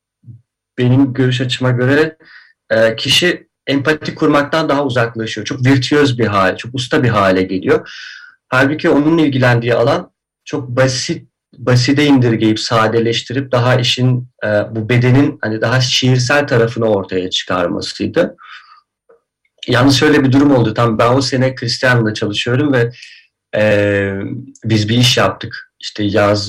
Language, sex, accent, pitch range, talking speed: Turkish, male, native, 110-140 Hz, 125 wpm